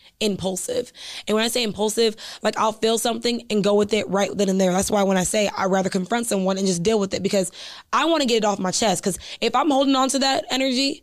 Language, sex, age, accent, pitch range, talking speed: English, female, 20-39, American, 190-220 Hz, 265 wpm